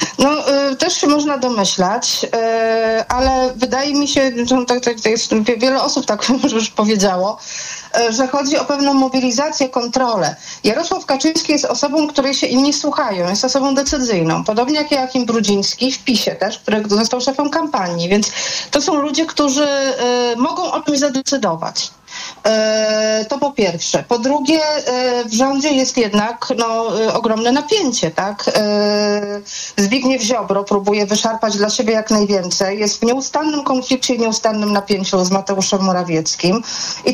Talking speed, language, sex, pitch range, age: 140 wpm, Polish, female, 205-265 Hz, 40-59